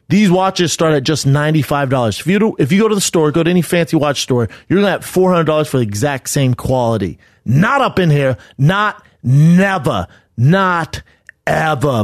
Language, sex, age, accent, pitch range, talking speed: English, male, 30-49, American, 130-175 Hz, 195 wpm